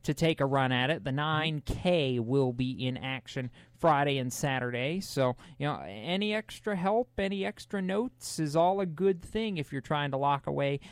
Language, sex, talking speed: English, male, 190 wpm